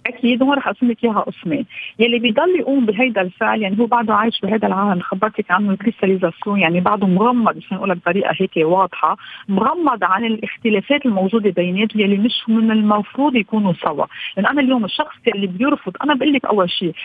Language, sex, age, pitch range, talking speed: Arabic, female, 40-59, 205-275 Hz, 185 wpm